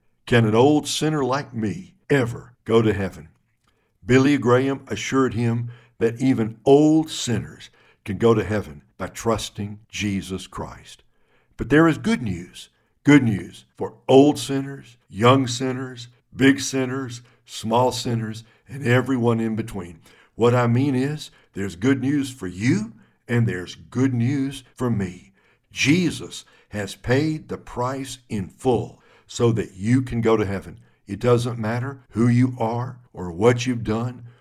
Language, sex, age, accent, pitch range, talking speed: English, male, 60-79, American, 105-130 Hz, 150 wpm